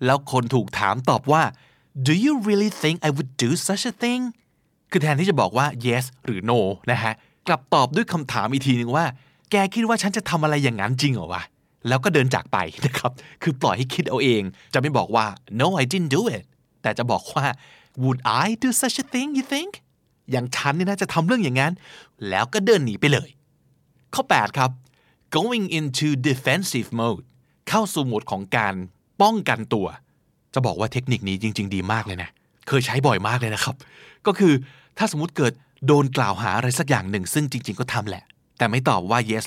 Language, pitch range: Thai, 125-180 Hz